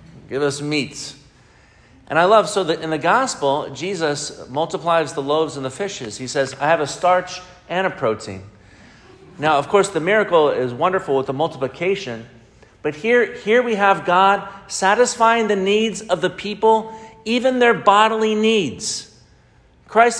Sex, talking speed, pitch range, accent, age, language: male, 160 wpm, 150-215 Hz, American, 50-69, English